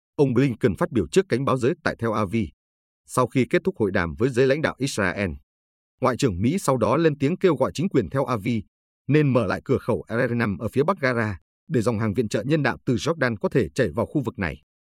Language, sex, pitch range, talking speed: Vietnamese, male, 100-135 Hz, 245 wpm